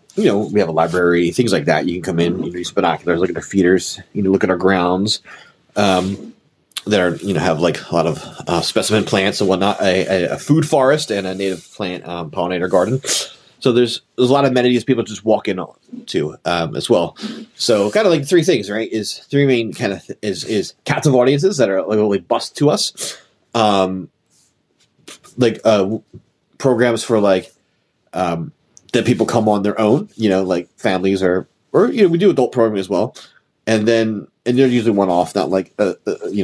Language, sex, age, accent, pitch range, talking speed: English, male, 30-49, American, 95-120 Hz, 220 wpm